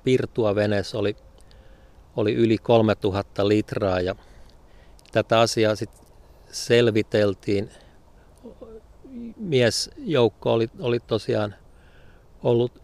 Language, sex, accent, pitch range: Finnish, male, native, 100-115 Hz